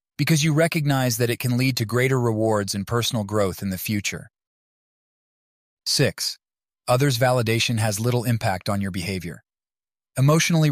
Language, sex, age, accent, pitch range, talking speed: English, male, 30-49, American, 105-130 Hz, 145 wpm